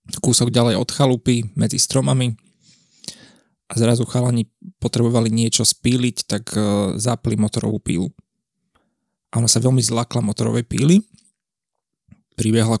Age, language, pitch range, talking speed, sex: 20-39, Slovak, 115-145 Hz, 115 wpm, male